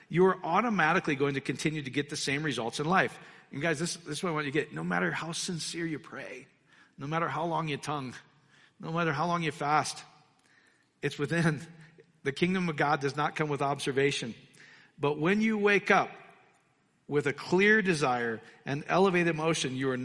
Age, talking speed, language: 40-59, 200 wpm, English